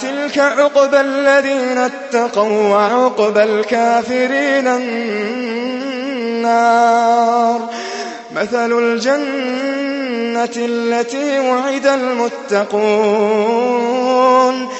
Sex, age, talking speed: male, 20-39, 45 wpm